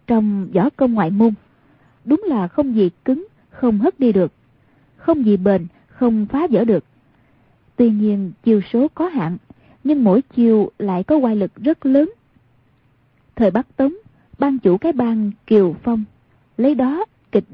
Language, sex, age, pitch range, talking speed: Vietnamese, female, 20-39, 190-260 Hz, 165 wpm